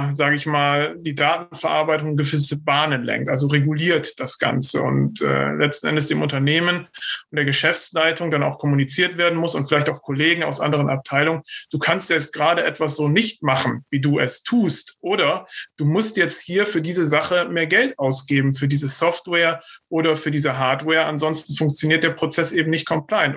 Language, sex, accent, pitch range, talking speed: German, male, German, 145-165 Hz, 180 wpm